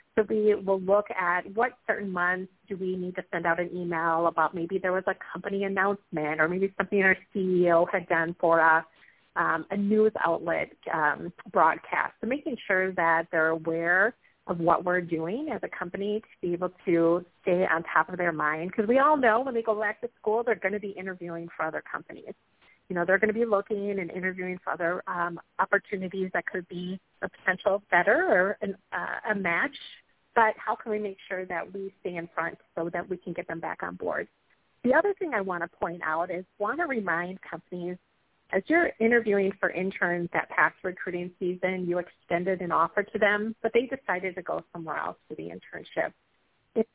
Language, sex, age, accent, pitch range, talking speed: English, female, 30-49, American, 175-210 Hz, 205 wpm